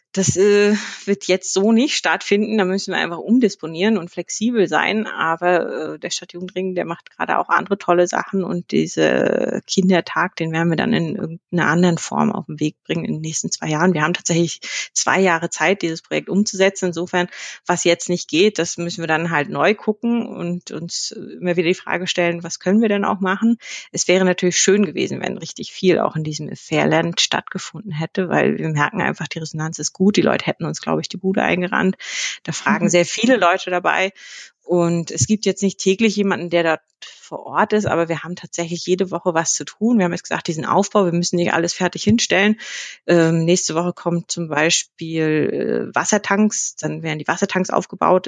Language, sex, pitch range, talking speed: German, female, 170-200 Hz, 200 wpm